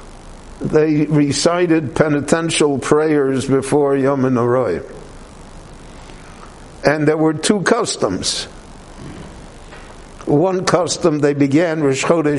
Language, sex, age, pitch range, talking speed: English, male, 60-79, 135-160 Hz, 85 wpm